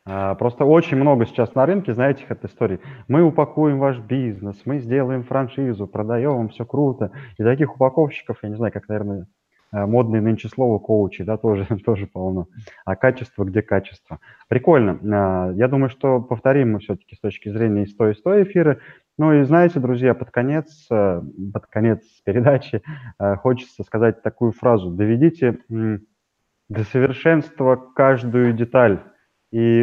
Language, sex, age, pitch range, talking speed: Russian, male, 20-39, 105-130 Hz, 150 wpm